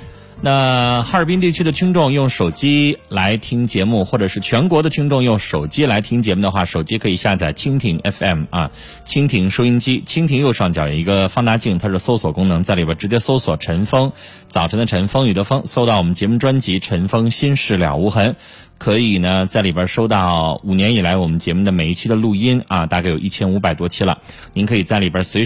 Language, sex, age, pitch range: Chinese, male, 30-49, 90-120 Hz